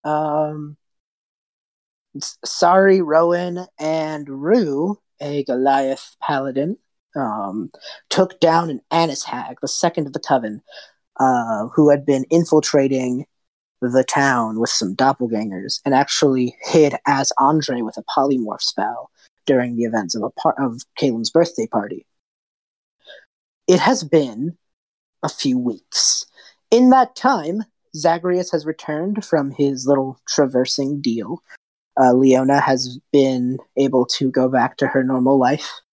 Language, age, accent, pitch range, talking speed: English, 30-49, American, 130-160 Hz, 130 wpm